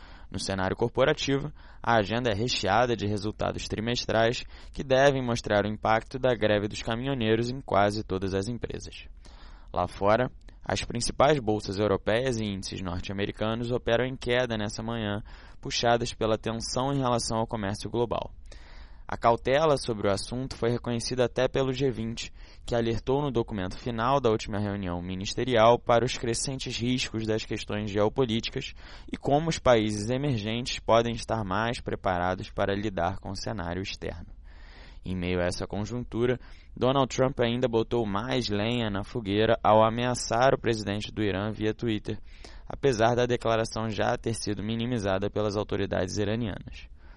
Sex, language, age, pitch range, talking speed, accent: male, Portuguese, 20-39, 100-120 Hz, 150 wpm, Brazilian